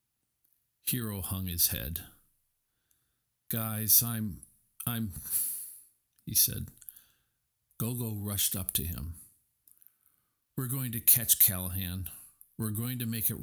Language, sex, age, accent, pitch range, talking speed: English, male, 50-69, American, 95-125 Hz, 105 wpm